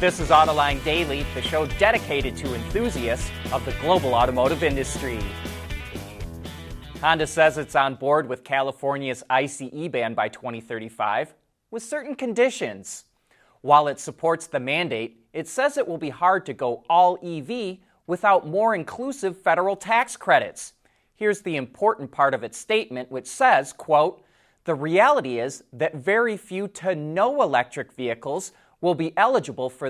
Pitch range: 135-185 Hz